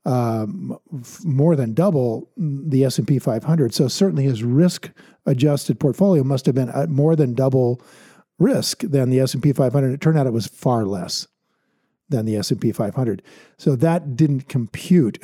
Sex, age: male, 50-69